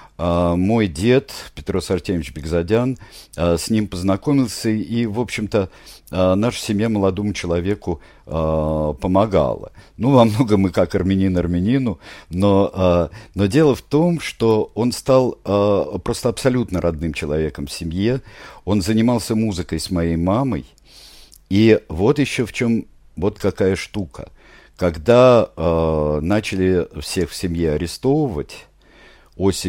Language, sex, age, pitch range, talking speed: Russian, male, 50-69, 80-110 Hz, 130 wpm